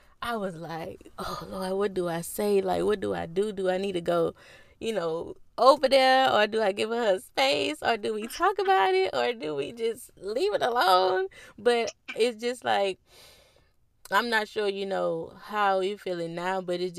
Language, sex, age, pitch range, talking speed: English, female, 20-39, 180-225 Hz, 200 wpm